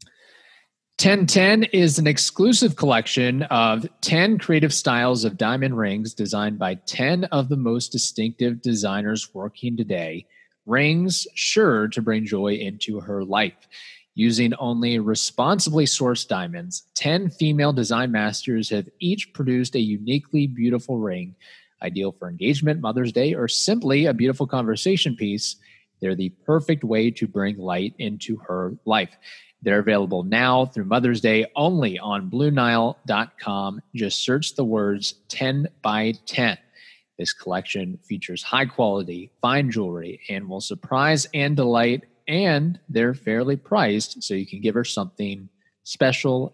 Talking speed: 135 wpm